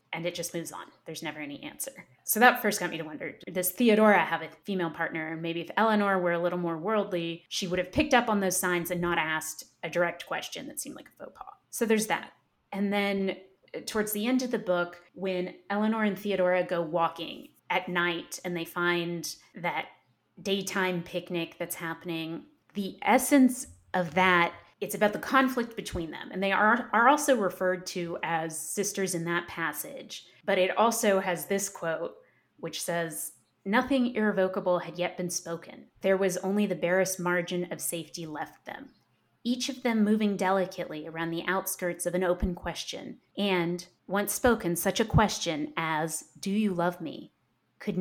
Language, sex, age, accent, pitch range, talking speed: English, female, 20-39, American, 170-205 Hz, 185 wpm